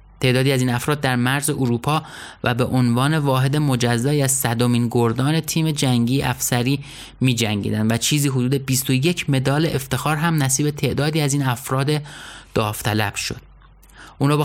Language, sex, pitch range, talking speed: Persian, male, 115-140 Hz, 145 wpm